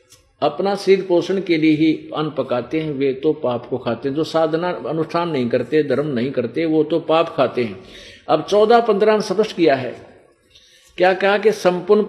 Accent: native